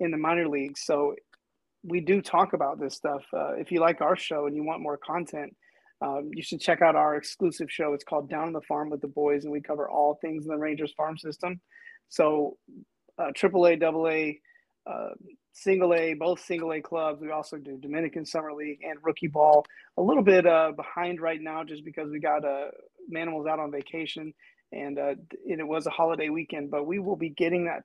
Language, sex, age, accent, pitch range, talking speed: English, male, 30-49, American, 150-175 Hz, 210 wpm